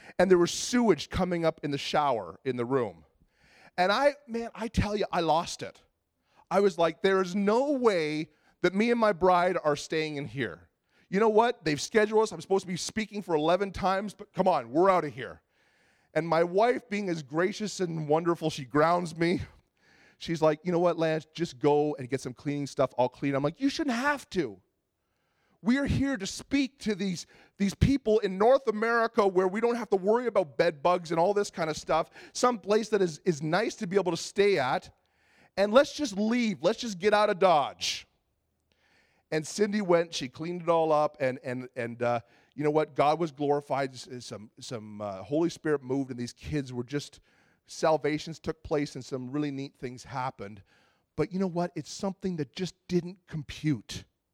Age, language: 30-49, English